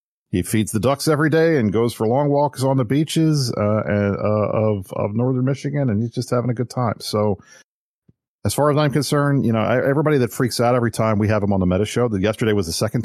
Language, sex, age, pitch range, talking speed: English, male, 40-59, 95-125 Hz, 245 wpm